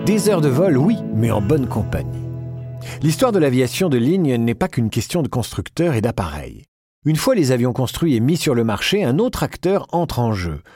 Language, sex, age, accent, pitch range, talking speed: French, male, 50-69, French, 115-170 Hz, 210 wpm